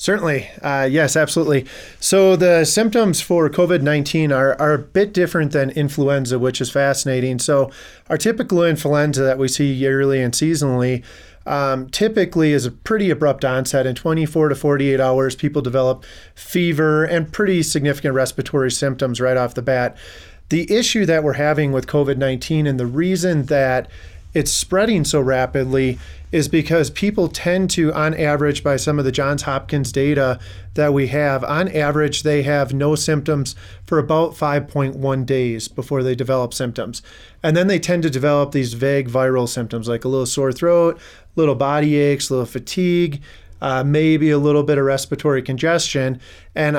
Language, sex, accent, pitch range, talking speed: English, male, American, 130-155 Hz, 165 wpm